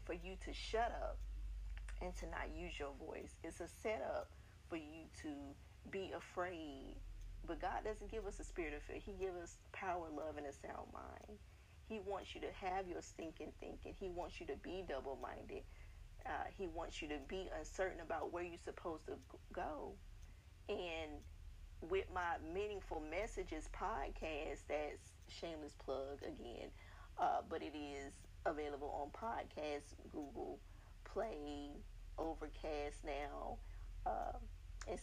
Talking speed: 145 wpm